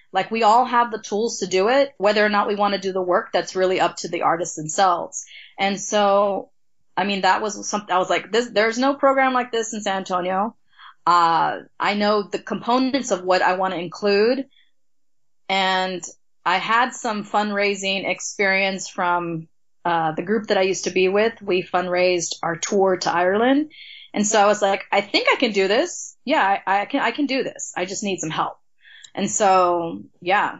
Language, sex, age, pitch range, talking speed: English, female, 20-39, 180-215 Hz, 205 wpm